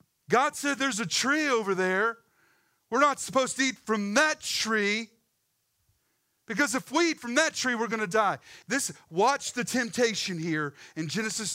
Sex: male